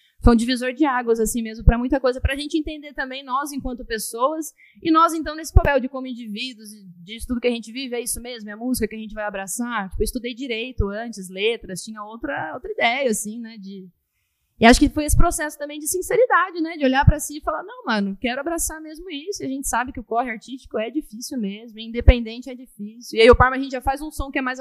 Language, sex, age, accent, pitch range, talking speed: Portuguese, female, 20-39, Brazilian, 220-275 Hz, 255 wpm